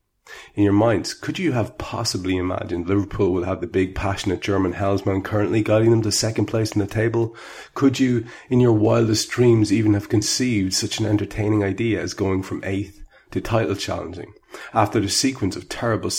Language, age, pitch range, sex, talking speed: English, 30-49, 95-110 Hz, male, 185 wpm